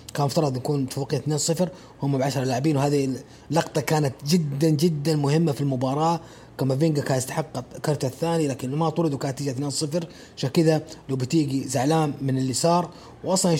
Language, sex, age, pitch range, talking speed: English, male, 30-49, 135-160 Hz, 165 wpm